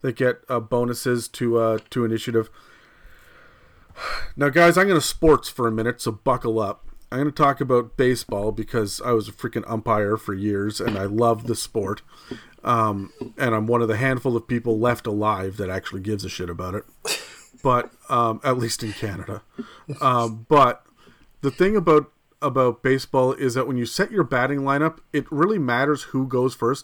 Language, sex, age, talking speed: English, male, 40-59, 190 wpm